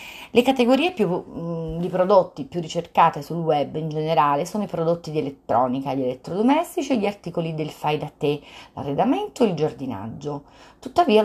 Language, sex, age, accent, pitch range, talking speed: Italian, female, 30-49, native, 150-195 Hz, 145 wpm